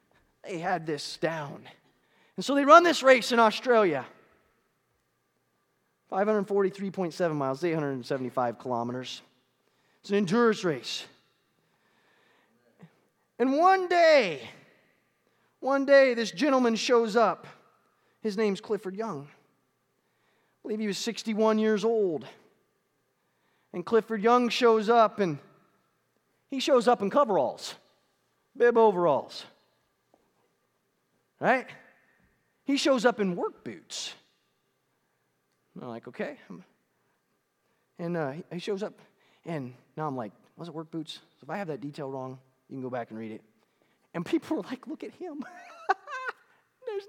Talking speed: 125 wpm